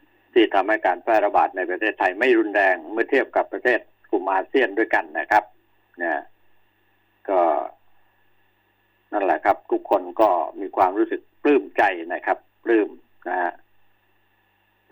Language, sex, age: Thai, male, 60-79